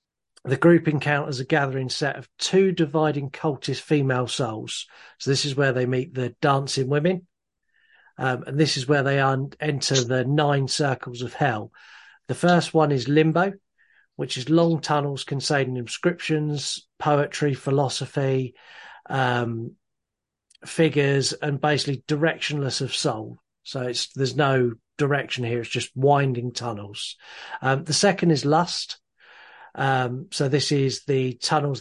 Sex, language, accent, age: male, English, British, 40-59